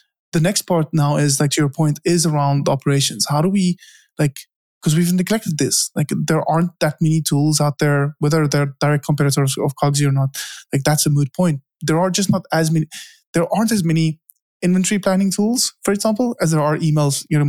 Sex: male